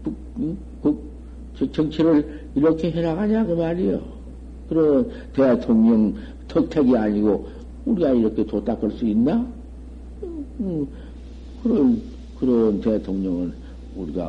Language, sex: Korean, male